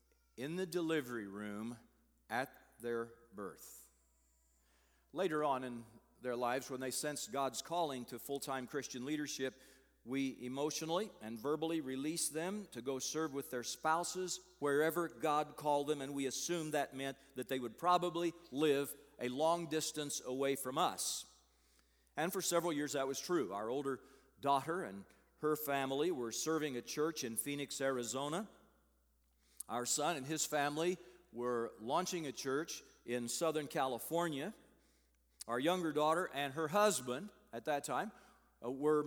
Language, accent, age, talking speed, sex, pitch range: English, American, 50-69, 145 wpm, male, 125-170 Hz